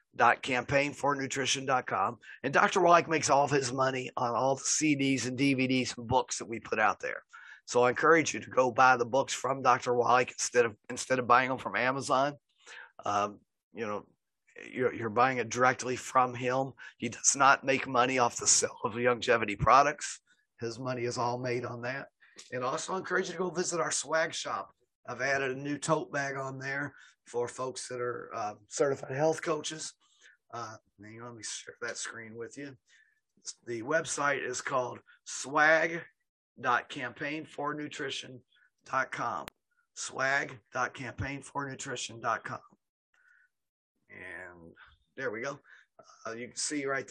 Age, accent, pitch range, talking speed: 40-59, American, 125-150 Hz, 155 wpm